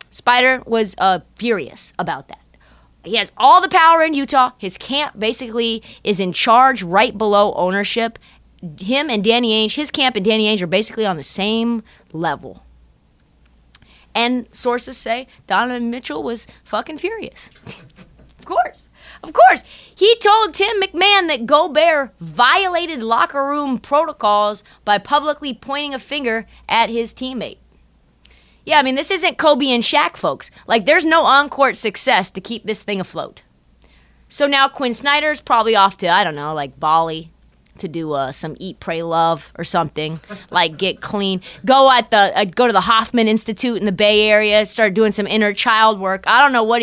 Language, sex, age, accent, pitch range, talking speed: English, female, 20-39, American, 195-260 Hz, 170 wpm